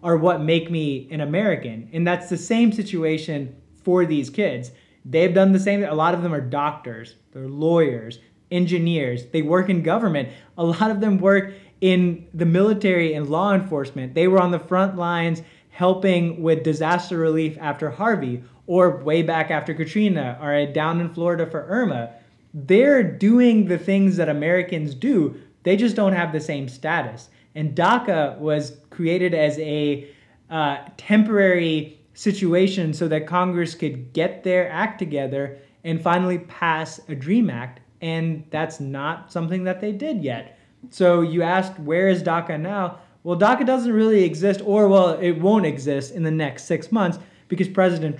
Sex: male